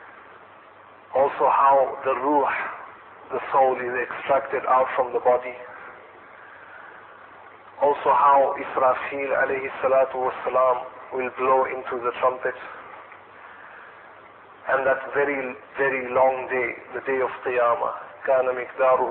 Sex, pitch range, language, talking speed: male, 125-140 Hz, English, 100 wpm